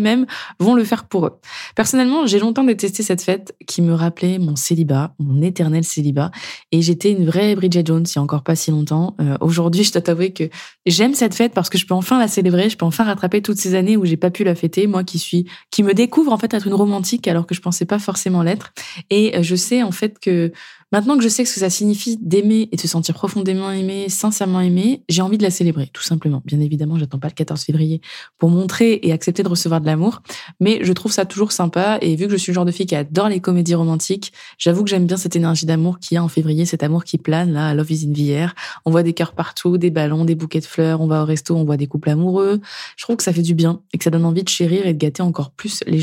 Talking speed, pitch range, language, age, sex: 270 wpm, 165-200 Hz, French, 20-39, female